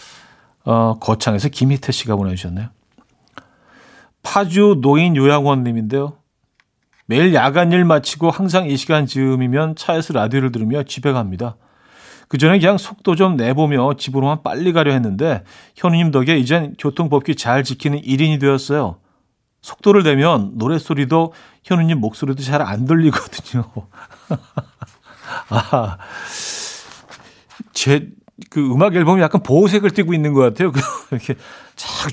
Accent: native